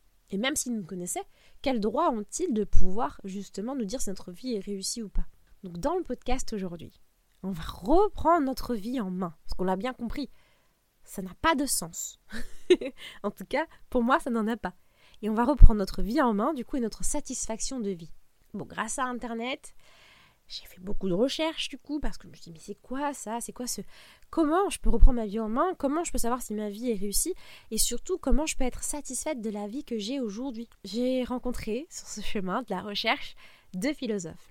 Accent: French